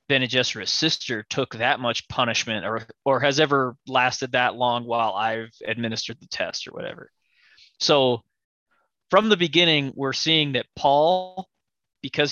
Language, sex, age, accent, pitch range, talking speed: English, male, 20-39, American, 120-145 Hz, 140 wpm